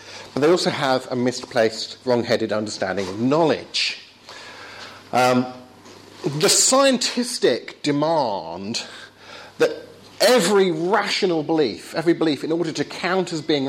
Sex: male